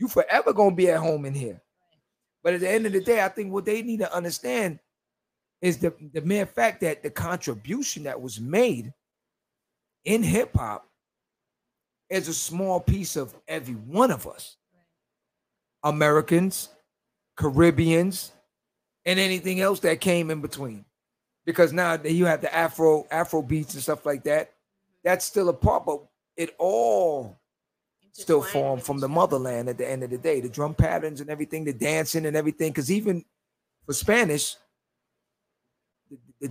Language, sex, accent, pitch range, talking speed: English, male, American, 150-185 Hz, 165 wpm